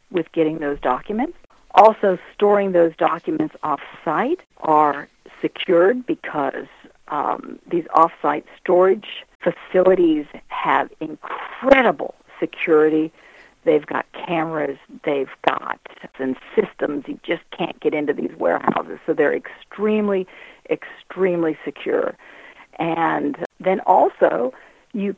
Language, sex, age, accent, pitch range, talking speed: English, female, 50-69, American, 145-215 Hz, 100 wpm